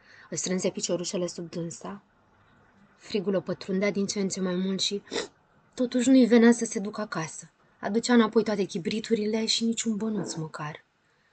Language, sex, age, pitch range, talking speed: Romanian, female, 20-39, 175-220 Hz, 155 wpm